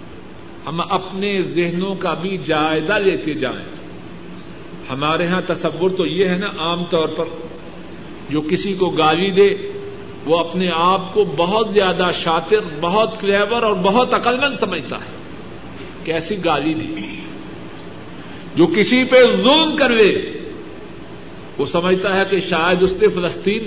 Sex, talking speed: male, 140 wpm